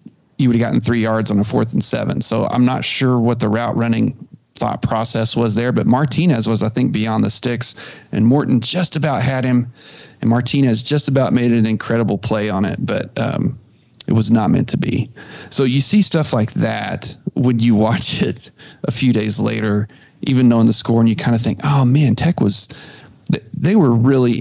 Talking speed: 210 wpm